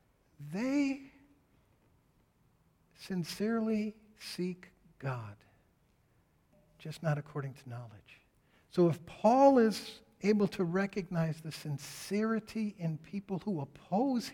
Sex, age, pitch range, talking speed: male, 60-79, 145-210 Hz, 90 wpm